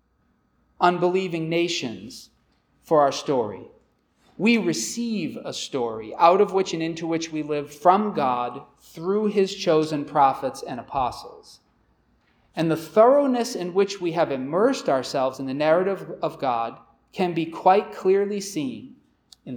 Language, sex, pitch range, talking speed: English, male, 135-190 Hz, 140 wpm